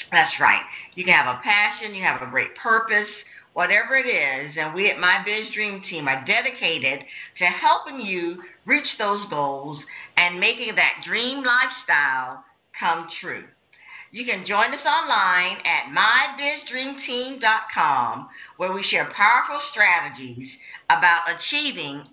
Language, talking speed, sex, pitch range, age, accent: English, 140 wpm, female, 185-265 Hz, 50-69, American